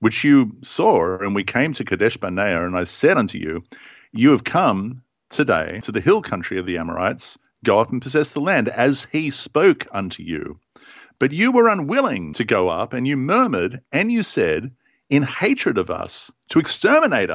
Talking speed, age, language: 190 wpm, 50-69, English